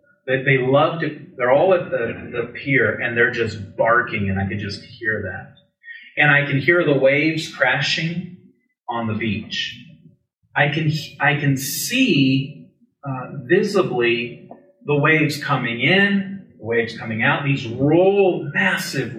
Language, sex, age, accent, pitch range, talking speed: English, male, 30-49, American, 120-165 Hz, 145 wpm